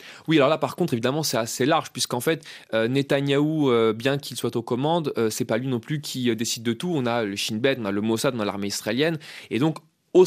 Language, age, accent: French, 20-39, French